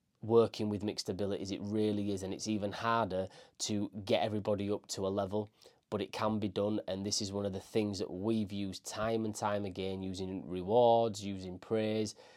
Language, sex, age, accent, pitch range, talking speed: English, male, 20-39, British, 95-110 Hz, 200 wpm